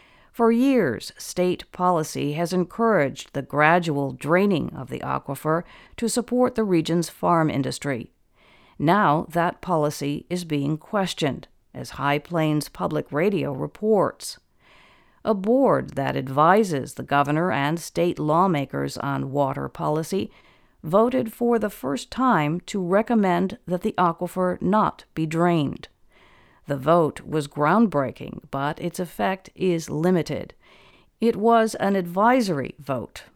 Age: 50-69